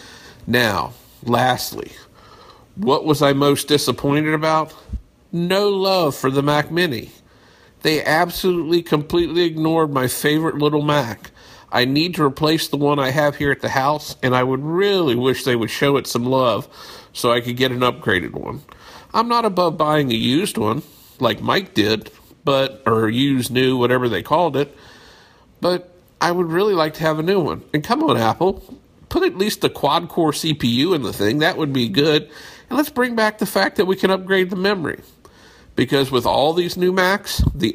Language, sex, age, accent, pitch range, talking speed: English, male, 50-69, American, 125-165 Hz, 185 wpm